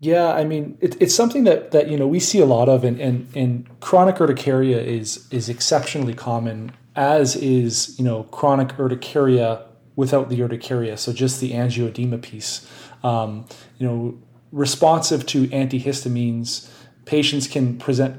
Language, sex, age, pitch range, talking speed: English, male, 30-49, 120-140 Hz, 155 wpm